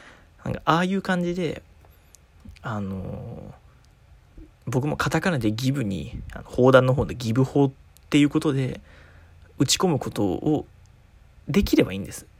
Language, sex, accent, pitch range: Japanese, male, native, 110-145 Hz